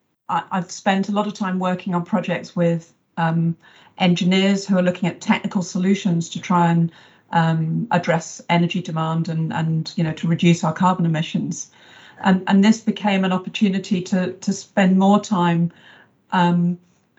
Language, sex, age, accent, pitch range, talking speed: English, female, 40-59, British, 170-195 Hz, 160 wpm